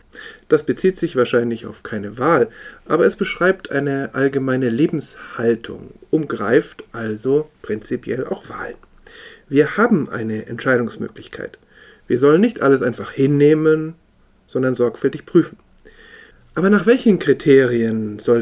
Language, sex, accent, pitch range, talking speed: German, male, German, 120-150 Hz, 115 wpm